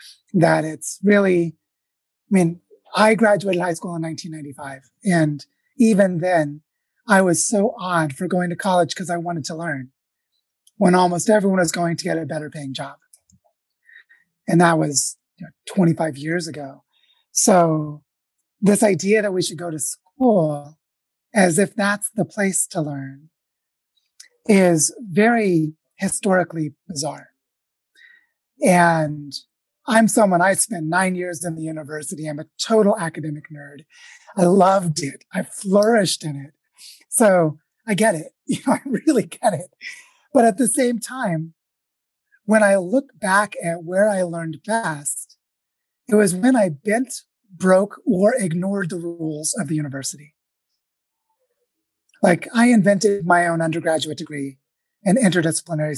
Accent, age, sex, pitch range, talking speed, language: American, 30-49, male, 160-210 Hz, 140 wpm, English